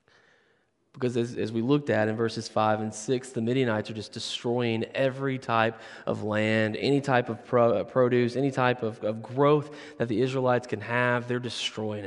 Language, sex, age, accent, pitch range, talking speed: English, male, 20-39, American, 115-150 Hz, 180 wpm